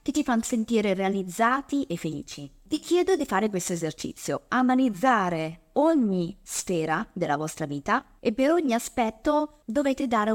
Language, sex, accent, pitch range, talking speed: Italian, female, native, 185-255 Hz, 145 wpm